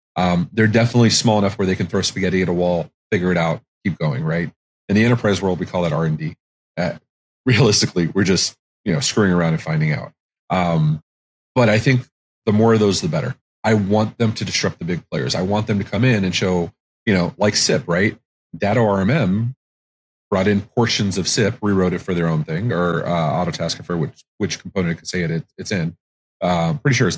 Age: 30-49